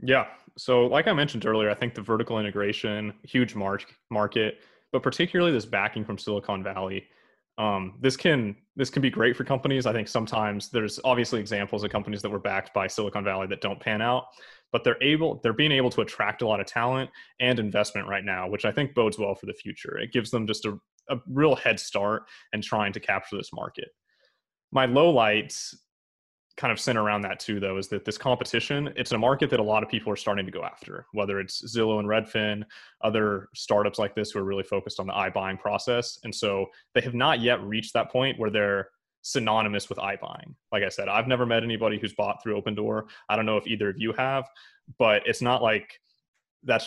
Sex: male